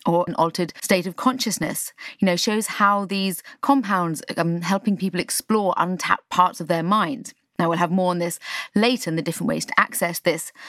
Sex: female